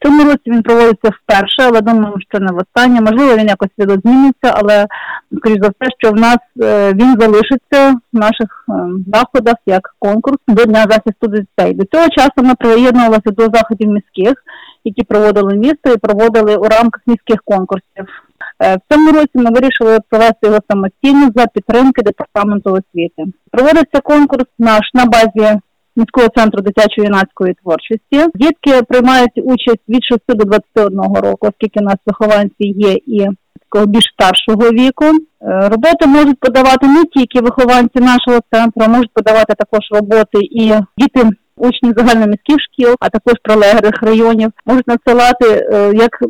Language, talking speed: Ukrainian, 145 wpm